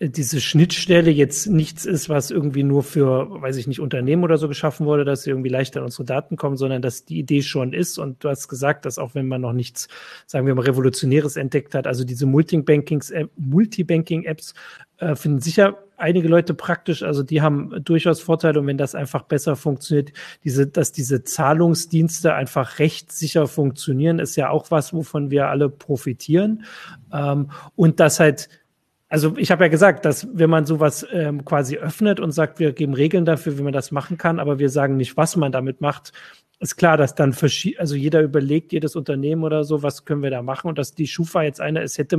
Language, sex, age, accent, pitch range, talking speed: German, male, 40-59, German, 140-160 Hz, 200 wpm